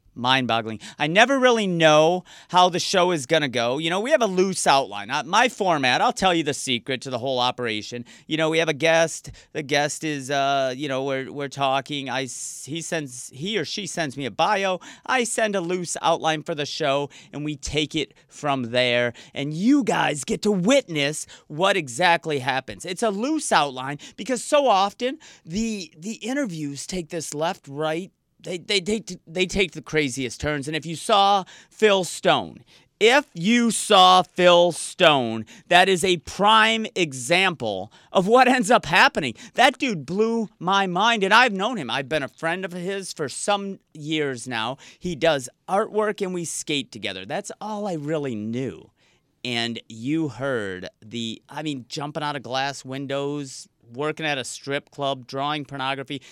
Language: English